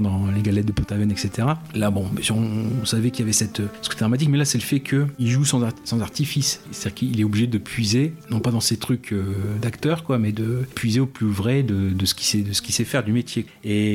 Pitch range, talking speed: 105-120 Hz, 255 wpm